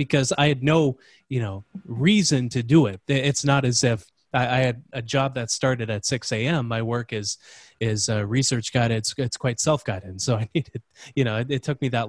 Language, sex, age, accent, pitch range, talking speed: English, male, 20-39, American, 120-150 Hz, 230 wpm